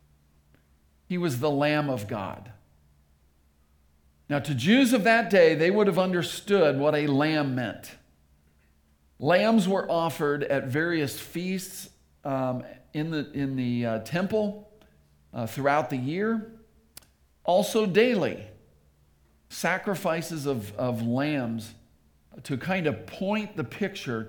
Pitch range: 100-165 Hz